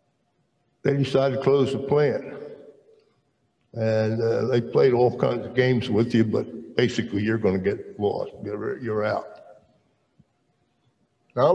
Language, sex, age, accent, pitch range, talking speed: English, male, 60-79, American, 110-125 Hz, 135 wpm